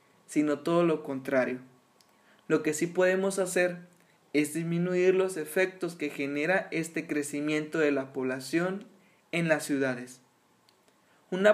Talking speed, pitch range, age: 125 wpm, 150-185 Hz, 20-39